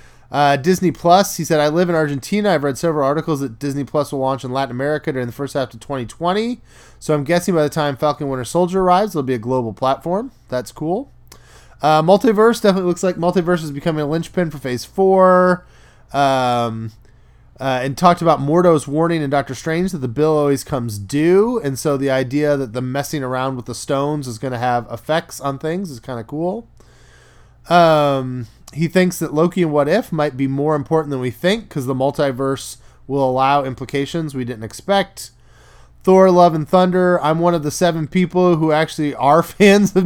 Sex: male